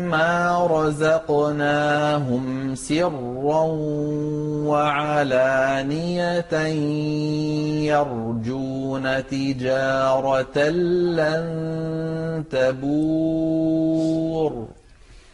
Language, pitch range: Arabic, 140-170 Hz